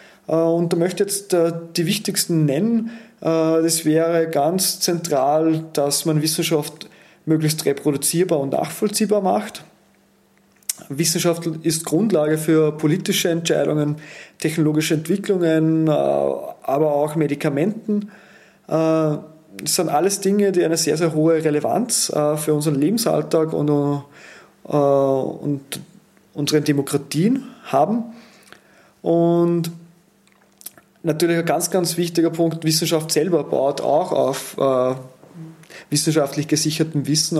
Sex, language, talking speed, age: male, German, 105 wpm, 30-49